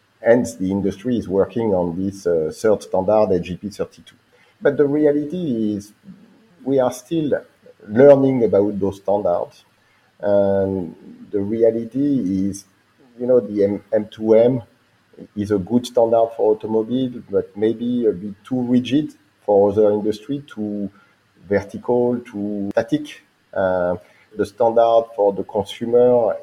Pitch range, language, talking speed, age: 100-125 Hz, English, 130 wpm, 50-69